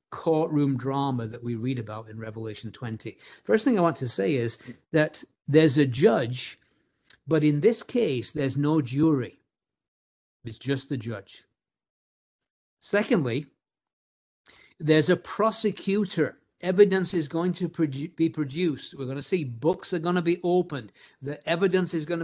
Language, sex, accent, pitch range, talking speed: English, male, British, 135-180 Hz, 150 wpm